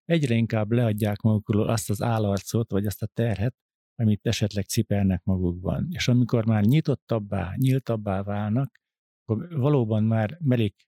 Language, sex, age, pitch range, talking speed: Hungarian, male, 50-69, 100-125 Hz, 140 wpm